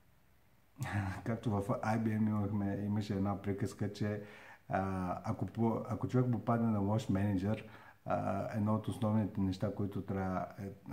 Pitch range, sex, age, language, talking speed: 95-115 Hz, male, 50-69, Bulgarian, 125 wpm